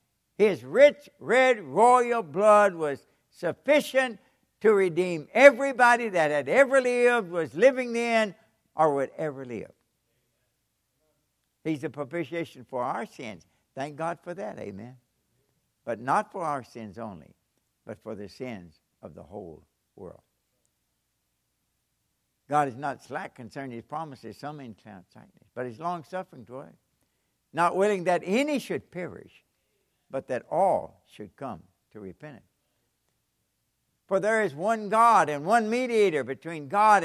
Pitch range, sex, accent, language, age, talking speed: 140-215 Hz, male, American, English, 60-79, 135 wpm